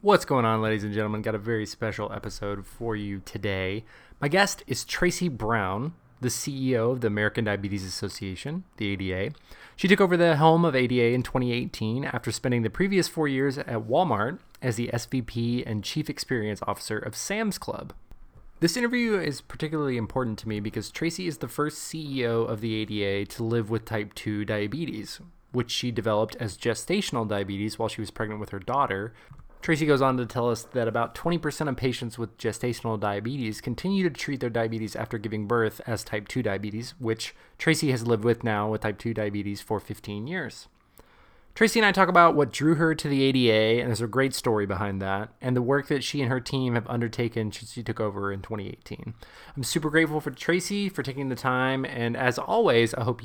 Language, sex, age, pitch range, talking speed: English, male, 20-39, 110-140 Hz, 200 wpm